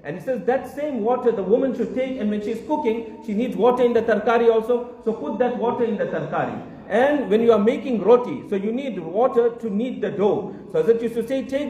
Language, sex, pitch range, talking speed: English, male, 215-255 Hz, 245 wpm